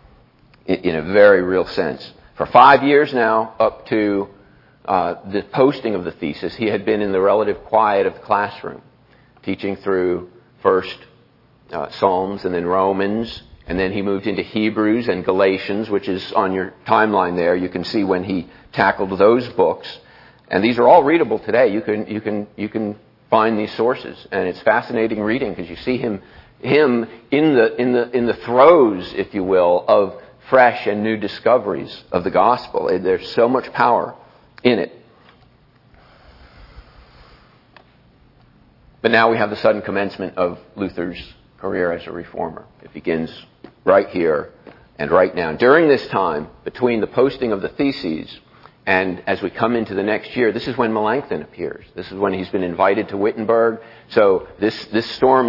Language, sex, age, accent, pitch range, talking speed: English, male, 50-69, American, 95-115 Hz, 170 wpm